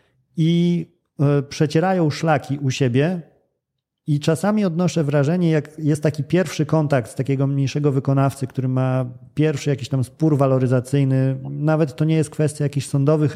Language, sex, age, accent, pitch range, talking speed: Polish, male, 40-59, native, 135-160 Hz, 145 wpm